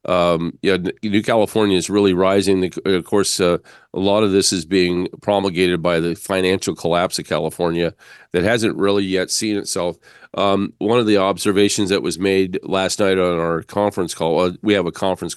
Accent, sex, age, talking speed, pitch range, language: American, male, 40-59, 185 wpm, 80-95 Hz, English